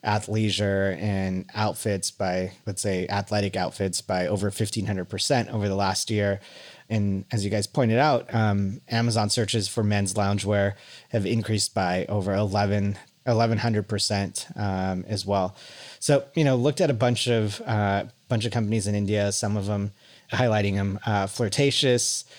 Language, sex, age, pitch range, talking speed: English, male, 30-49, 100-120 Hz, 155 wpm